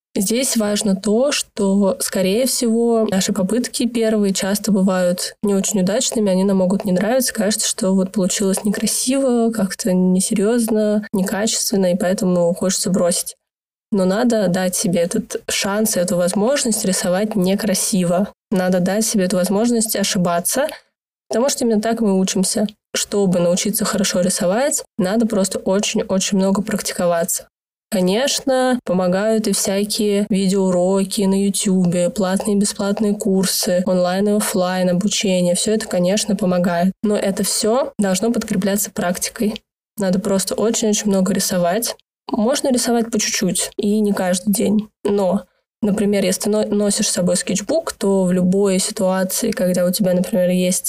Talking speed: 140 wpm